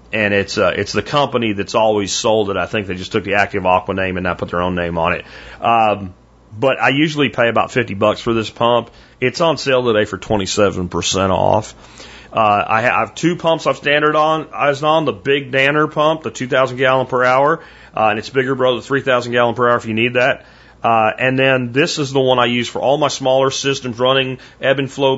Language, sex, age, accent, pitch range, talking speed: English, male, 40-59, American, 105-135 Hz, 215 wpm